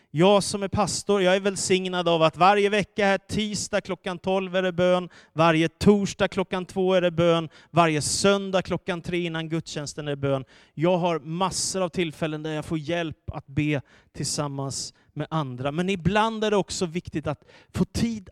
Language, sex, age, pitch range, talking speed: Swedish, male, 30-49, 145-185 Hz, 185 wpm